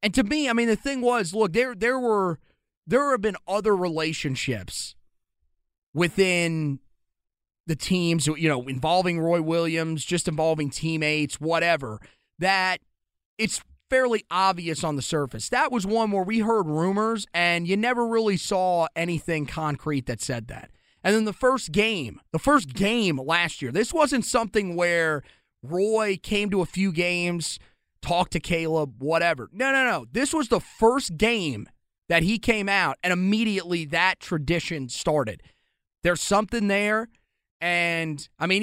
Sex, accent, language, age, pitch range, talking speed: male, American, English, 30-49, 160-210 Hz, 155 wpm